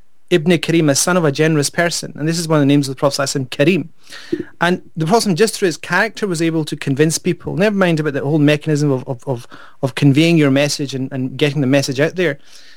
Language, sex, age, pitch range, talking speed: English, male, 30-49, 145-170 Hz, 235 wpm